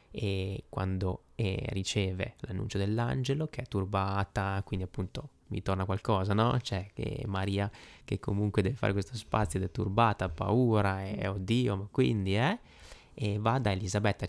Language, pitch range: Italian, 100-120 Hz